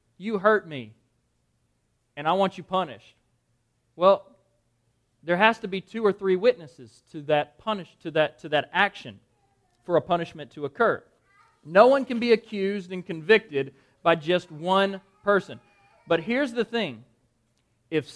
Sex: male